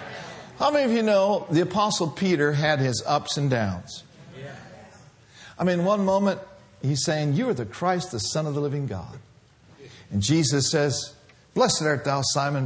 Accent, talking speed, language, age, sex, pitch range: American, 170 wpm, English, 50-69, male, 145-210 Hz